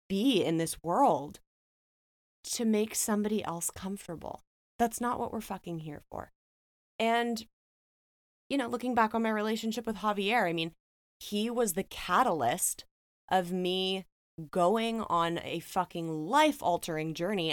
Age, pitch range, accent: 20-39, 155-200 Hz, American